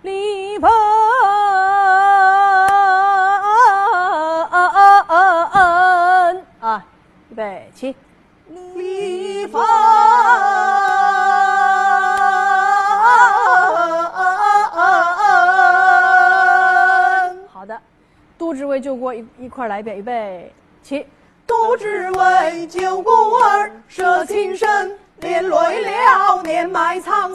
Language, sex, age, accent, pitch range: Chinese, female, 30-49, native, 315-400 Hz